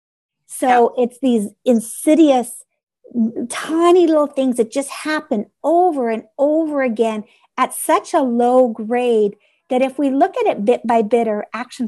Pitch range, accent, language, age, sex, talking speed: 220-275 Hz, American, English, 50-69, female, 150 wpm